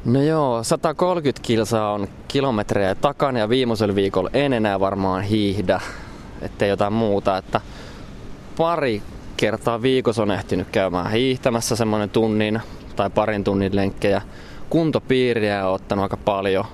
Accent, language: native, Finnish